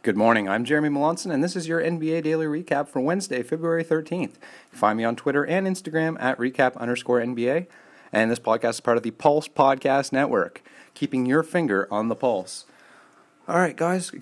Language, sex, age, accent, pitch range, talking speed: English, male, 30-49, American, 115-150 Hz, 200 wpm